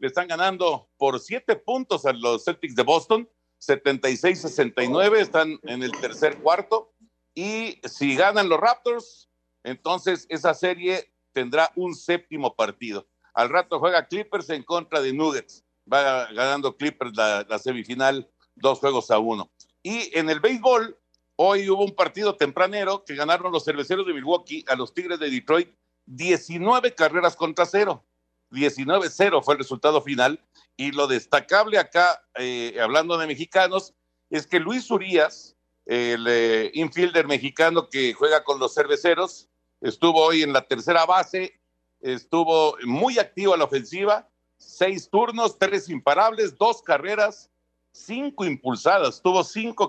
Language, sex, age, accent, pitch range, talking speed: Spanish, male, 60-79, Mexican, 130-185 Hz, 140 wpm